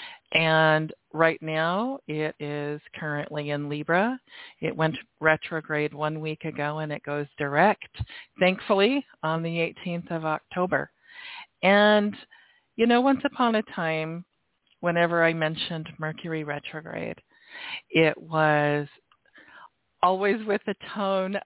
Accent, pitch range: American, 155-210 Hz